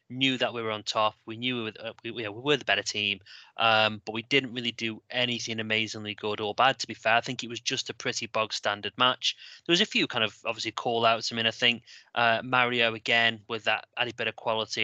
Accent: British